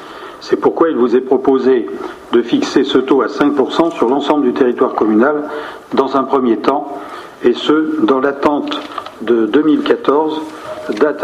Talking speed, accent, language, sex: 150 wpm, French, French, male